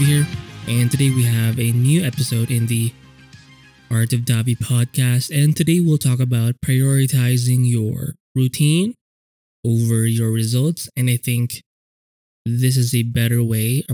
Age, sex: 20-39, male